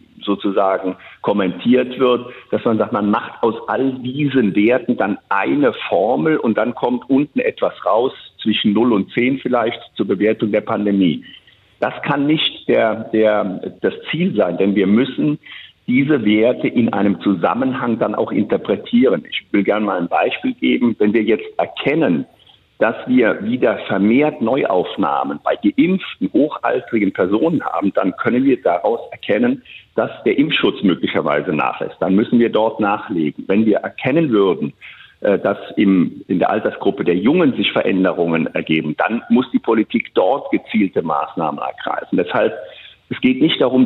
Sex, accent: male, German